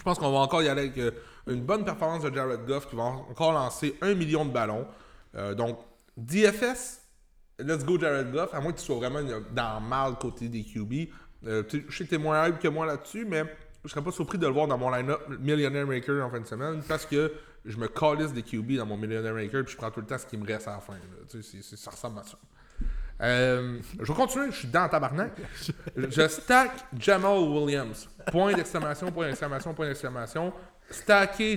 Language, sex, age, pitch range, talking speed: French, male, 30-49, 130-175 Hz, 220 wpm